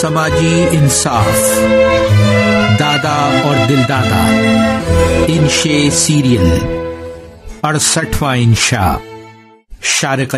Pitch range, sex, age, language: 115-170 Hz, male, 50-69, English